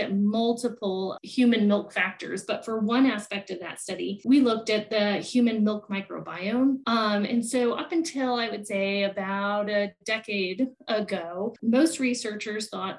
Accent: American